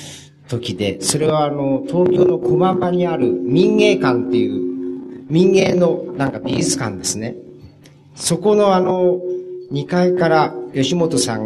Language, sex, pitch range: Japanese, male, 115-170 Hz